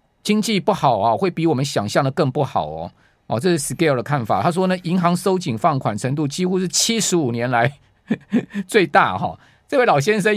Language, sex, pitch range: Chinese, male, 140-180 Hz